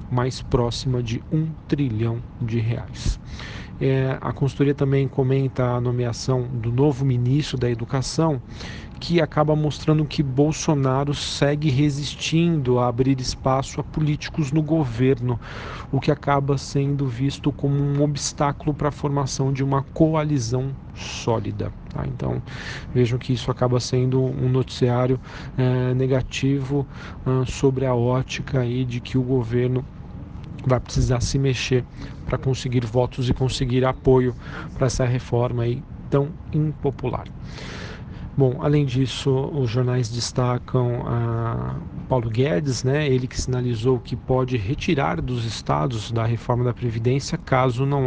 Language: Portuguese